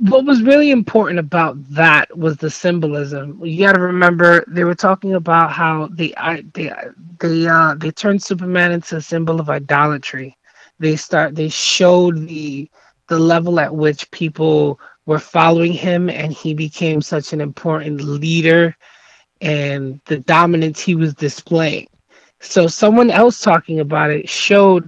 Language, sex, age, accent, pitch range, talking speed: English, male, 20-39, American, 155-180 Hz, 150 wpm